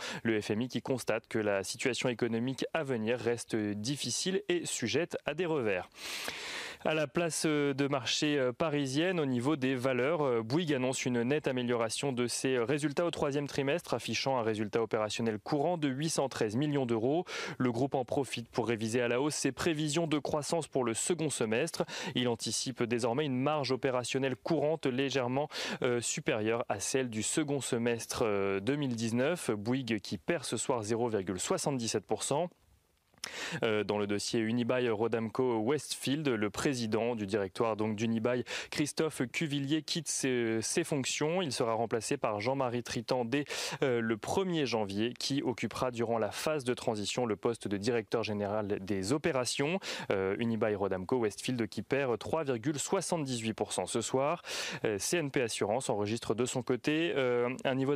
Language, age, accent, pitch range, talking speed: French, 30-49, French, 115-145 Hz, 145 wpm